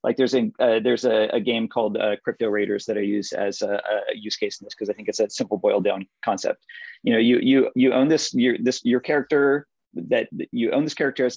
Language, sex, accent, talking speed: English, male, American, 255 wpm